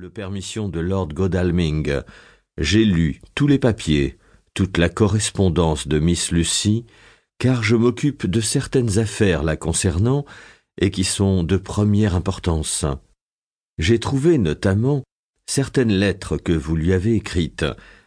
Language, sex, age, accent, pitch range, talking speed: French, male, 50-69, French, 85-110 Hz, 130 wpm